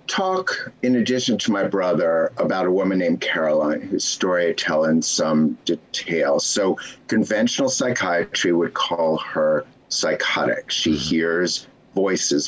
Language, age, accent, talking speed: English, 50-69, American, 135 wpm